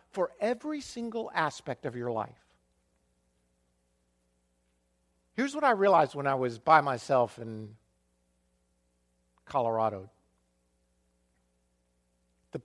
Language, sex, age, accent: English, male, 50-69, American